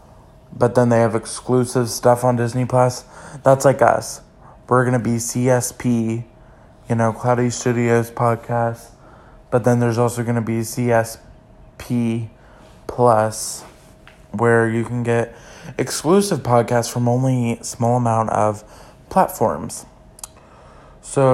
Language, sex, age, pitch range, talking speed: English, male, 20-39, 115-130 Hz, 125 wpm